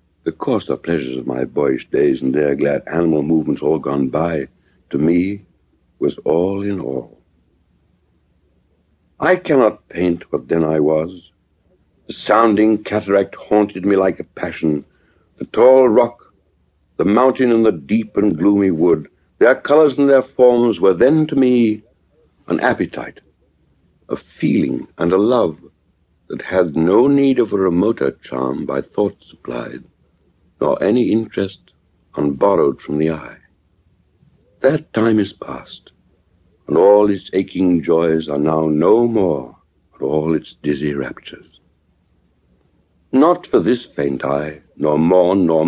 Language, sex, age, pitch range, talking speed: English, male, 60-79, 80-105 Hz, 140 wpm